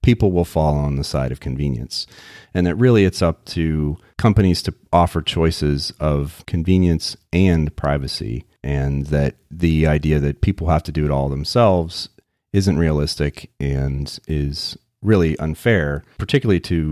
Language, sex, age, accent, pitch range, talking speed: English, male, 30-49, American, 75-95 Hz, 150 wpm